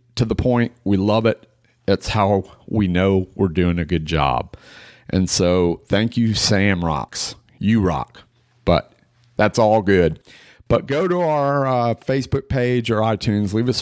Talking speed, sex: 165 wpm, male